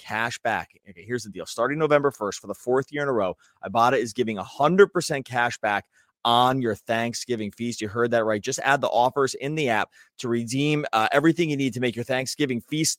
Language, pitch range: English, 110-145 Hz